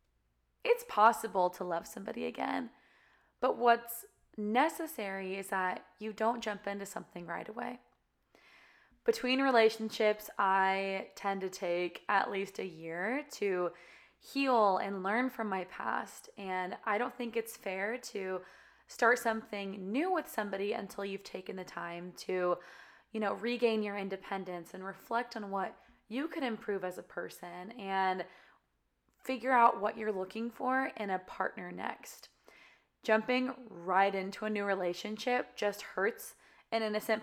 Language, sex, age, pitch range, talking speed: English, female, 20-39, 190-245 Hz, 145 wpm